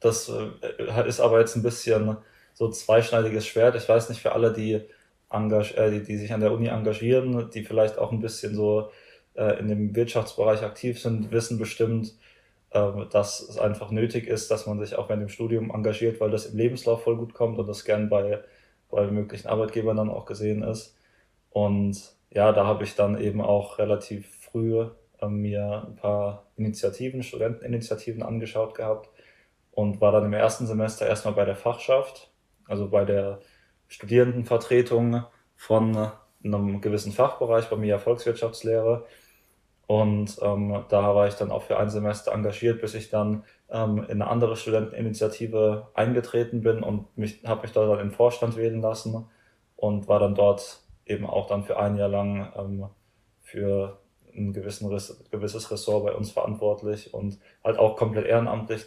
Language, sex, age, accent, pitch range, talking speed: German, male, 20-39, German, 105-115 Hz, 170 wpm